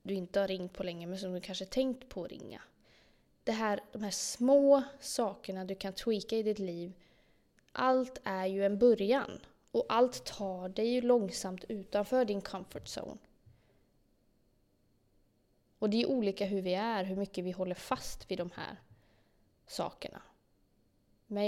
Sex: female